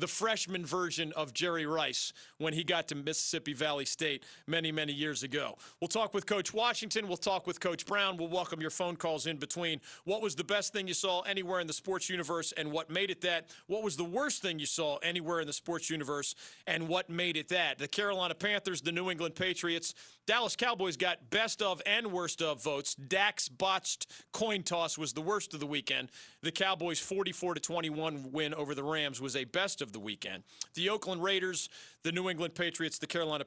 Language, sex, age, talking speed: English, male, 40-59, 210 wpm